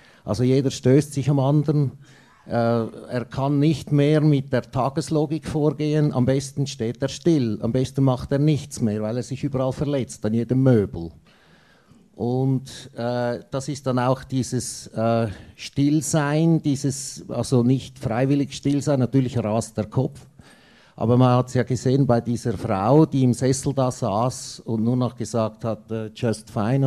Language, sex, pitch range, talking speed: German, male, 115-140 Hz, 165 wpm